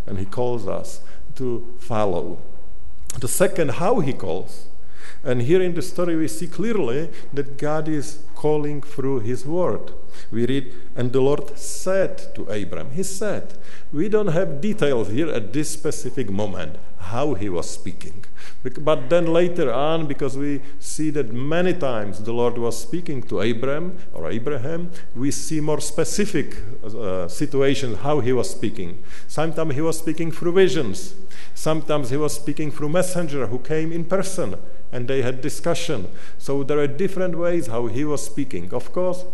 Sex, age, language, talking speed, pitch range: male, 50-69, English, 165 wpm, 135-175 Hz